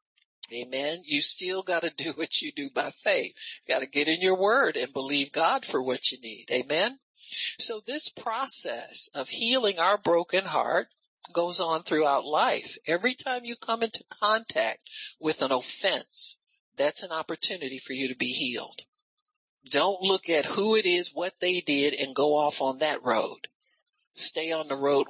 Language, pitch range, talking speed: English, 150-225 Hz, 175 wpm